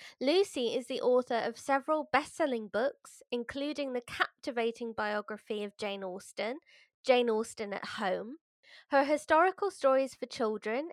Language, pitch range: English, 215-285 Hz